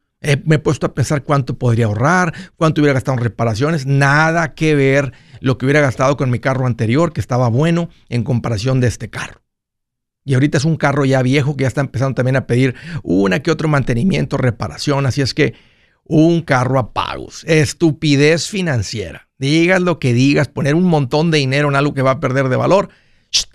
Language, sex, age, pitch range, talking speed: Spanish, male, 50-69, 120-150 Hz, 200 wpm